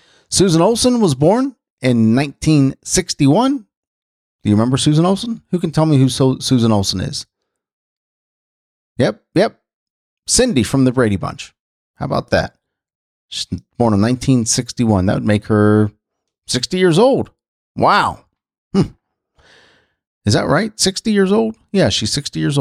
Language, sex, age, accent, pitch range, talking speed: English, male, 30-49, American, 110-165 Hz, 135 wpm